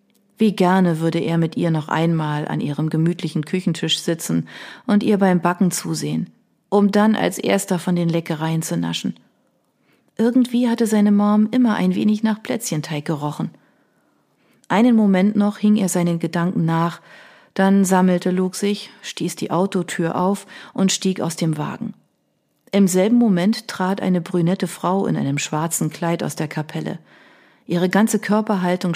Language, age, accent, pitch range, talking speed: German, 40-59, German, 165-200 Hz, 155 wpm